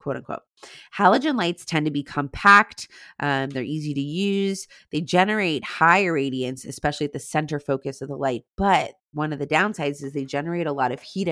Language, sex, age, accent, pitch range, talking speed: English, female, 20-39, American, 135-165 Hz, 195 wpm